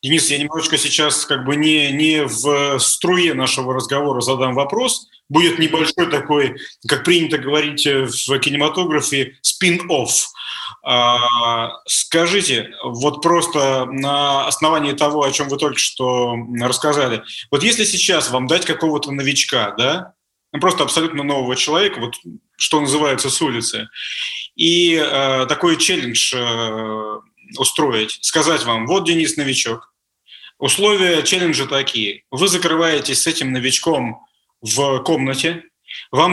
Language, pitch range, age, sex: Russian, 130-165 Hz, 30-49, male